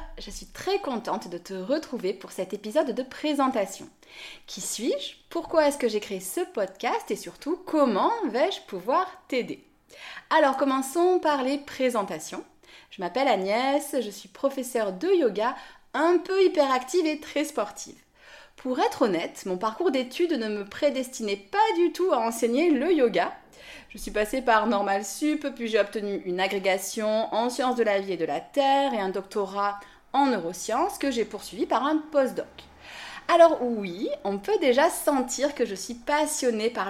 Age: 30-49